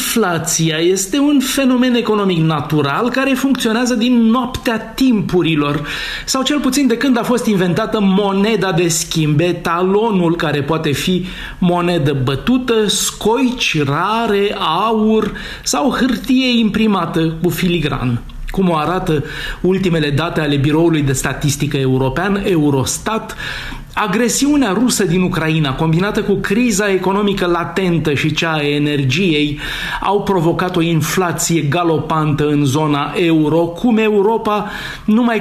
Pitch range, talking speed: 155-220 Hz, 120 wpm